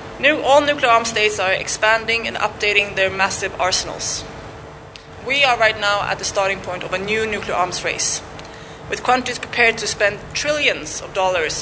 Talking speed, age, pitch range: 175 wpm, 20-39, 195-240 Hz